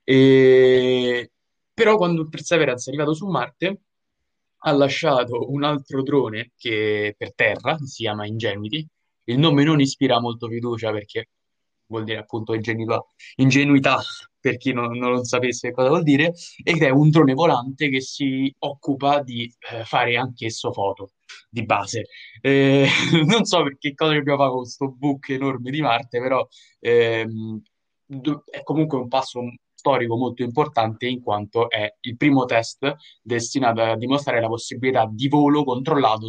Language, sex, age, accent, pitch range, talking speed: Italian, male, 20-39, native, 115-140 Hz, 150 wpm